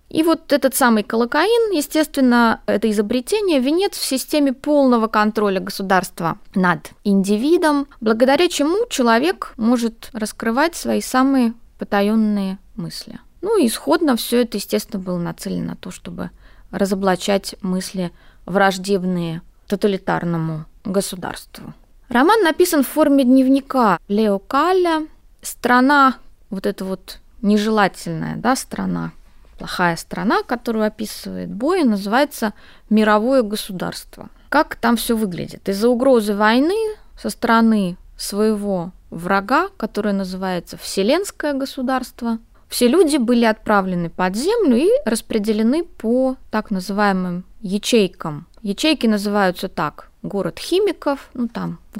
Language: Russian